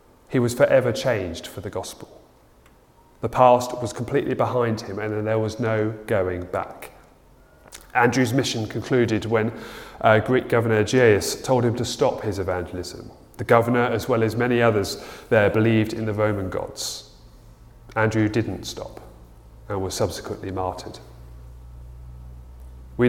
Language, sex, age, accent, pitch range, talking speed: English, male, 30-49, British, 100-125 Hz, 140 wpm